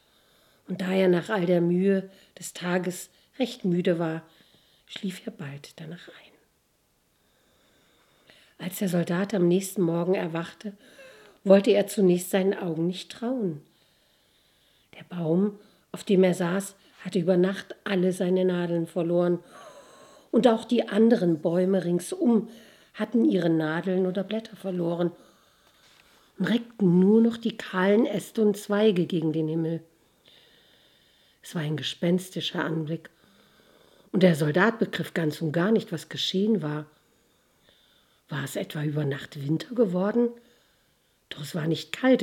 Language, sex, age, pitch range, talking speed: German, female, 50-69, 165-200 Hz, 135 wpm